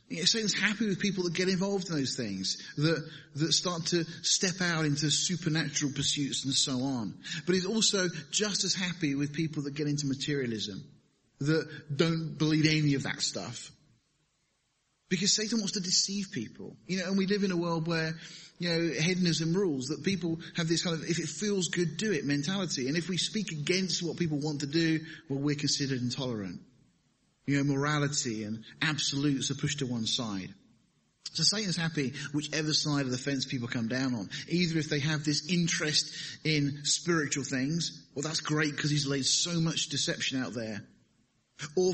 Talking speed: 185 wpm